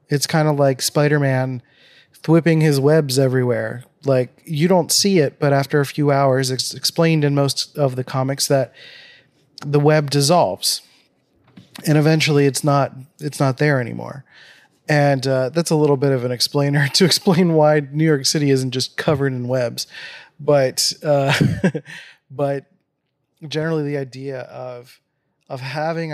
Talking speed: 155 wpm